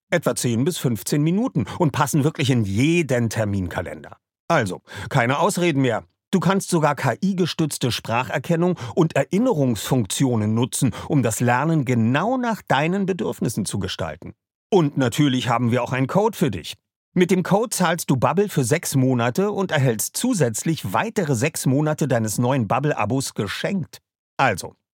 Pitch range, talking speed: 120-175 Hz, 145 wpm